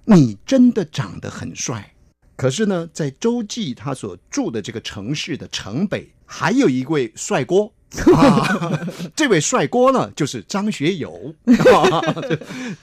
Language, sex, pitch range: Chinese, male, 125-205 Hz